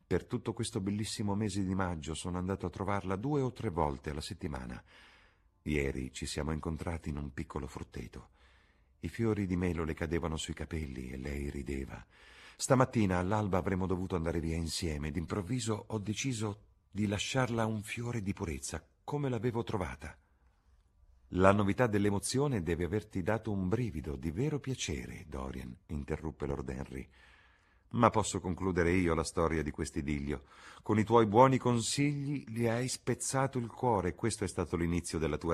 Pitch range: 80-115 Hz